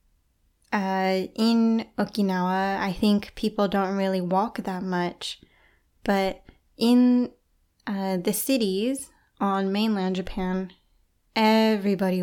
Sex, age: female, 10-29